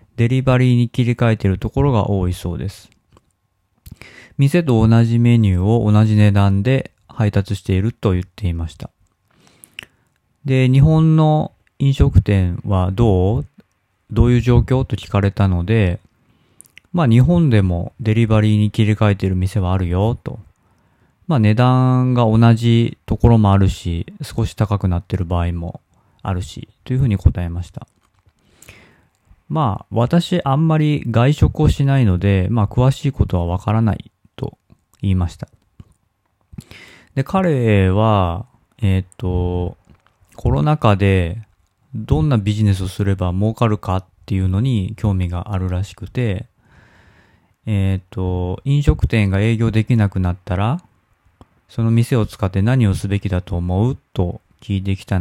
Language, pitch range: Japanese, 95-120 Hz